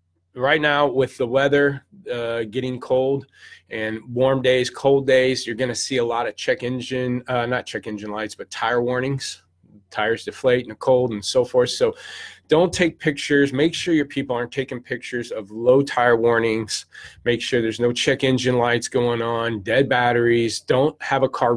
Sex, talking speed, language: male, 185 wpm, English